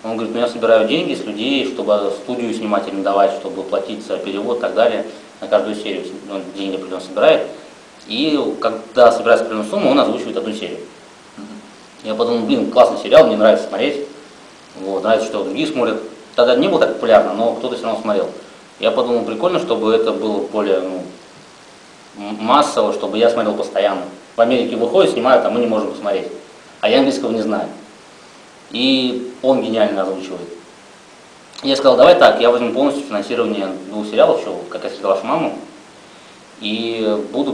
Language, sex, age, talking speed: Russian, male, 20-39, 170 wpm